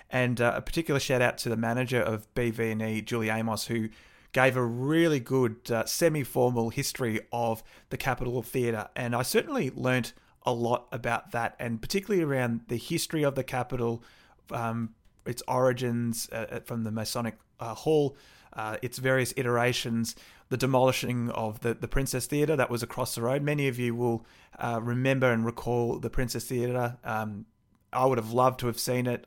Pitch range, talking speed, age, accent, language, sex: 115-130 Hz, 175 wpm, 30-49, Australian, English, male